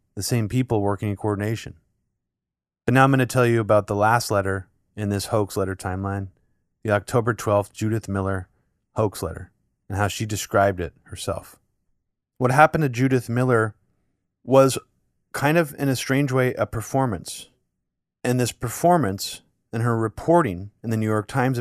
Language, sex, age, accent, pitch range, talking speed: English, male, 30-49, American, 100-130 Hz, 165 wpm